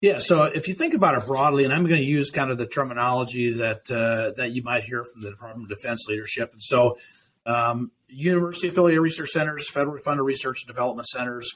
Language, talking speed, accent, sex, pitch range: English, 220 wpm, American, male, 120-145 Hz